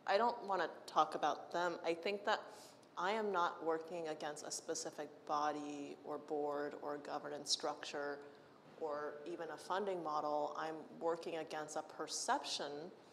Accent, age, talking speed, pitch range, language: American, 30-49, 150 wpm, 150-165 Hz, English